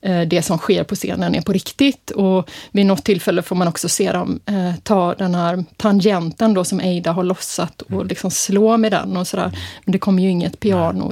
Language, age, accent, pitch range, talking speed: Swedish, 30-49, native, 185-230 Hz, 210 wpm